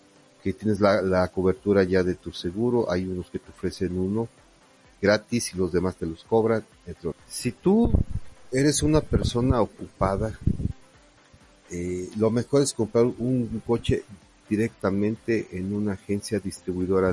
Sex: male